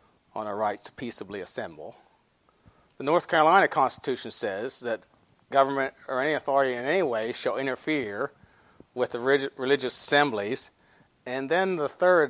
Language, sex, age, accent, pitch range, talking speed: English, male, 40-59, American, 150-195 Hz, 140 wpm